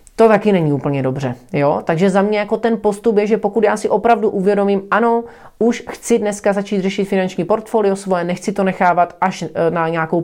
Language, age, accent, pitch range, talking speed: Czech, 30-49, native, 165-205 Hz, 190 wpm